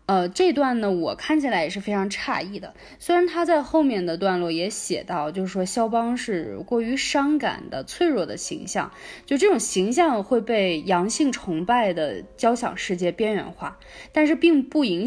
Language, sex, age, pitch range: Chinese, female, 20-39, 185-285 Hz